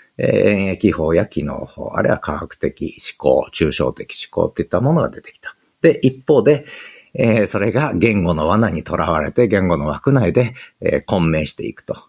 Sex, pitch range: male, 95-150 Hz